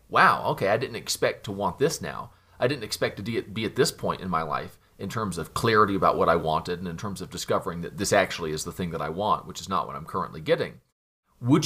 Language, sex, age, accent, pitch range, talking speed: English, male, 40-59, American, 95-125 Hz, 255 wpm